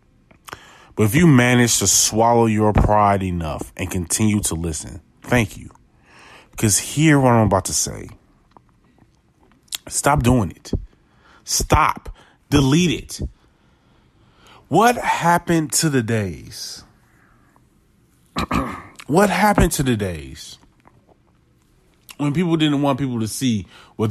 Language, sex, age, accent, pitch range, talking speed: English, male, 30-49, American, 90-115 Hz, 115 wpm